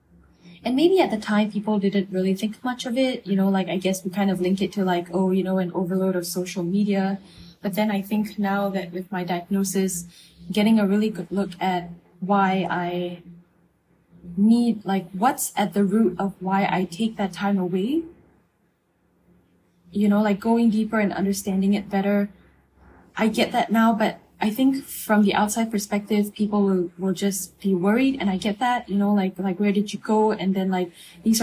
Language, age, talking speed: English, 10-29, 200 wpm